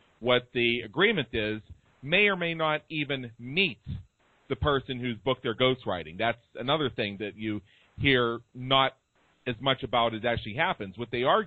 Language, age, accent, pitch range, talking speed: English, 40-59, American, 115-150 Hz, 165 wpm